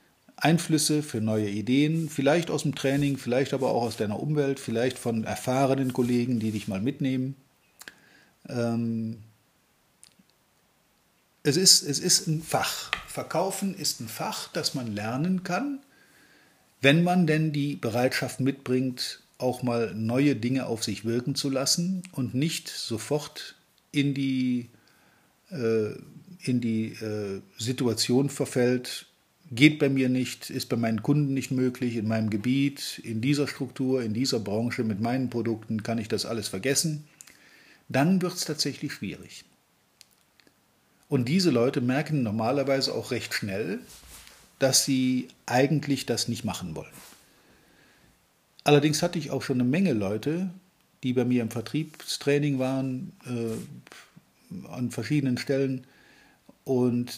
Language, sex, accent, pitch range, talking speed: German, male, German, 120-145 Hz, 130 wpm